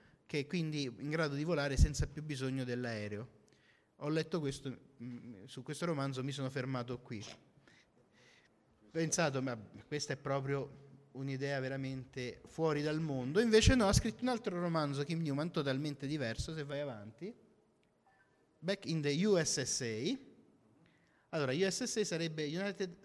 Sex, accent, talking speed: male, native, 140 wpm